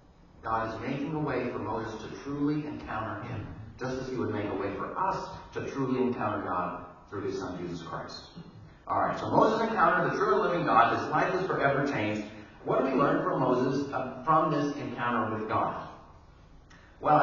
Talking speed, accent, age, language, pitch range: 190 wpm, American, 40-59, English, 115-170 Hz